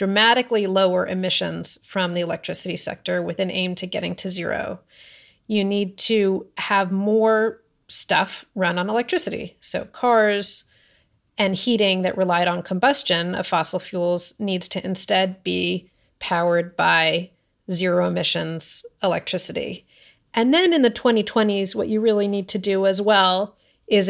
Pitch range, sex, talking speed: 180-215 Hz, female, 140 wpm